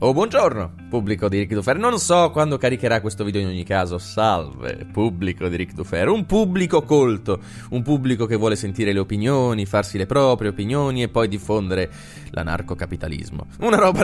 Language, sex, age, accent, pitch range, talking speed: Italian, male, 20-39, native, 95-130 Hz, 170 wpm